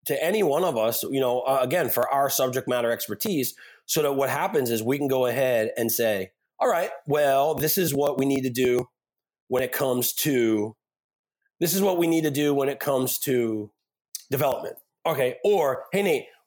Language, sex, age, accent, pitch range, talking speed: English, male, 30-49, American, 115-155 Hz, 200 wpm